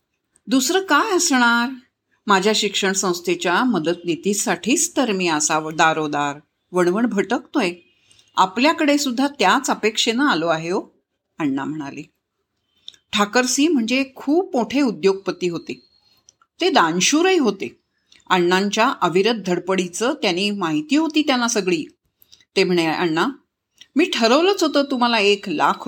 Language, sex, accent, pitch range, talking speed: Marathi, female, native, 190-295 Hz, 115 wpm